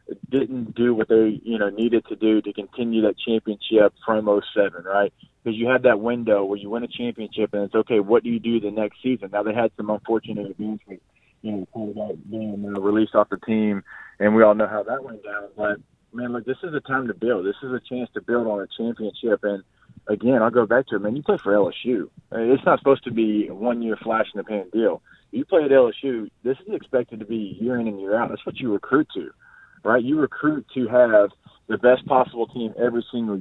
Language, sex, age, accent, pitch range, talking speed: English, male, 20-39, American, 105-125 Hz, 230 wpm